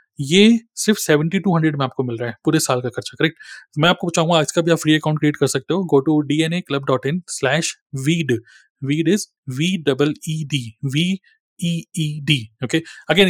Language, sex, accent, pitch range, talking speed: Hindi, male, native, 140-175 Hz, 155 wpm